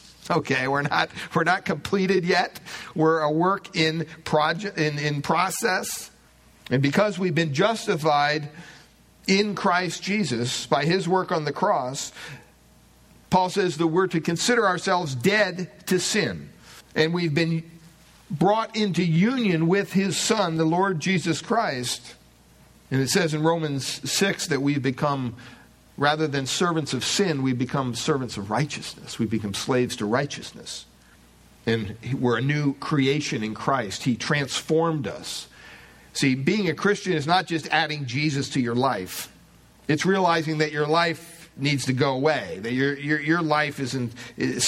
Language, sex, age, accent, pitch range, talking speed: English, male, 50-69, American, 125-170 Hz, 155 wpm